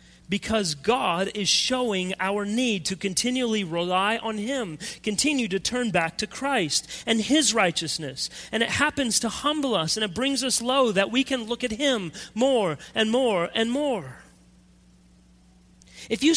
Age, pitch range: 40-59, 150-240 Hz